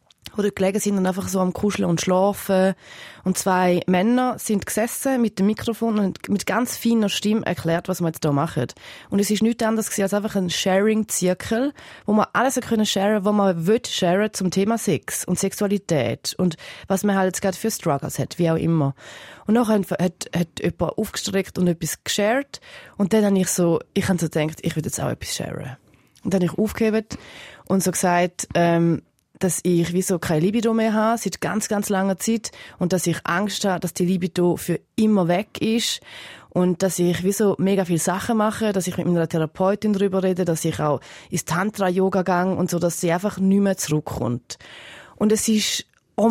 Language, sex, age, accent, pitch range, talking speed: German, female, 20-39, German, 180-220 Hz, 200 wpm